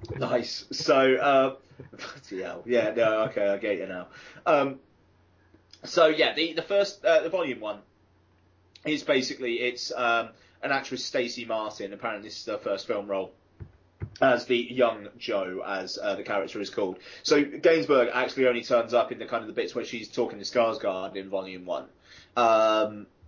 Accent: British